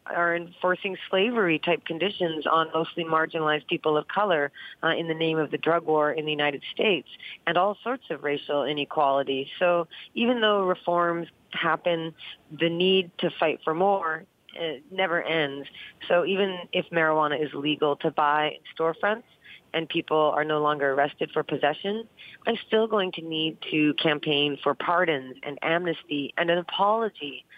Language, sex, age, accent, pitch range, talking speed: English, female, 30-49, American, 155-180 Hz, 160 wpm